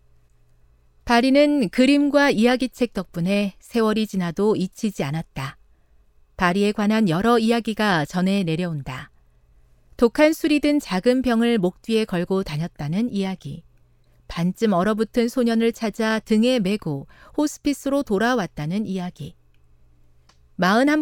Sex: female